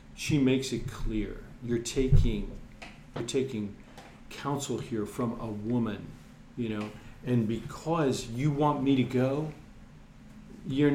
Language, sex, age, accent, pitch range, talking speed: English, male, 50-69, American, 125-160 Hz, 125 wpm